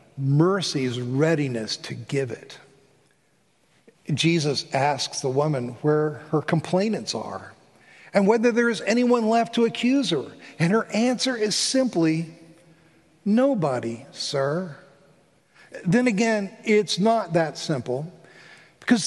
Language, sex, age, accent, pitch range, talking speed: English, male, 50-69, American, 145-210 Hz, 115 wpm